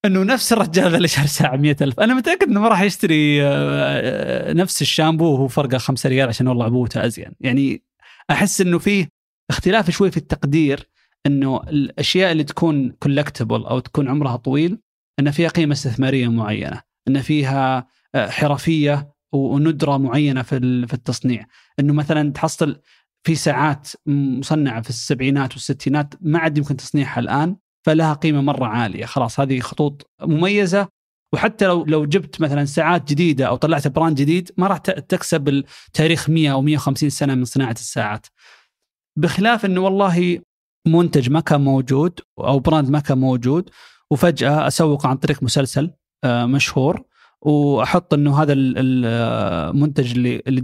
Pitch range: 135-165 Hz